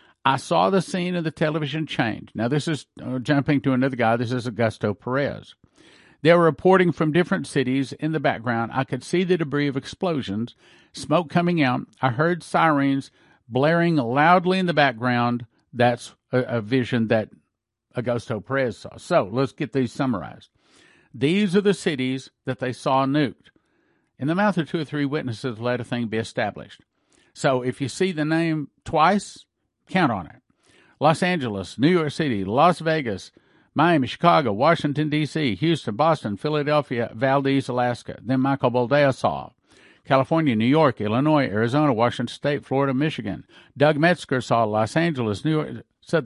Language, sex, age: English, male, 50-69